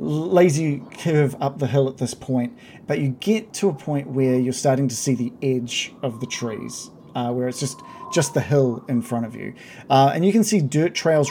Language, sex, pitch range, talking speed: English, male, 125-150 Hz, 225 wpm